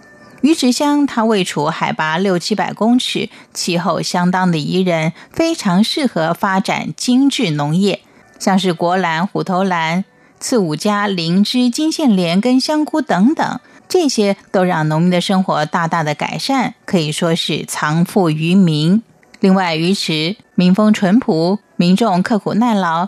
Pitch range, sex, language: 165-220 Hz, female, Chinese